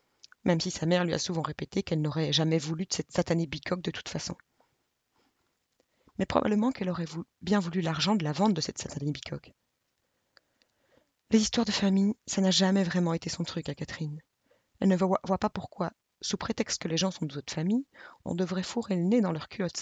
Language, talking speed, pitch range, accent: French, 210 wpm, 160-190 Hz, French